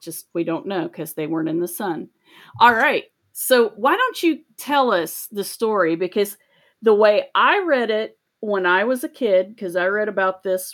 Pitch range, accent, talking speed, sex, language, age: 170-215 Hz, American, 200 wpm, female, English, 40-59